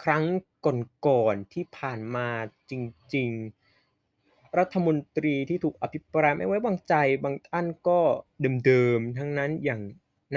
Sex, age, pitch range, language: male, 20-39, 125-155 Hz, Thai